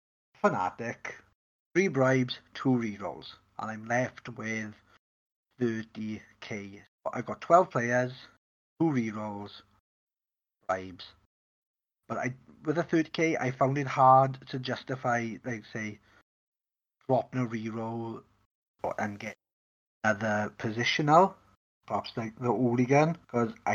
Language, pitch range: English, 110-140 Hz